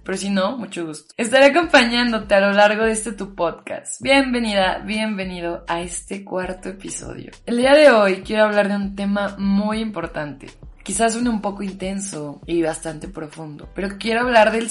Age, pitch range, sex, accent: 20-39, 175-220 Hz, female, Mexican